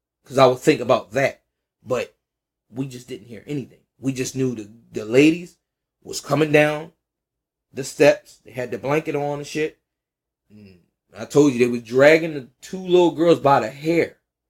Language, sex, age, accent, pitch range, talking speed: English, male, 20-39, American, 110-150 Hz, 180 wpm